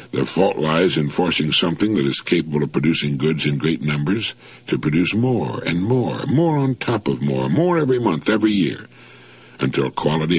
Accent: American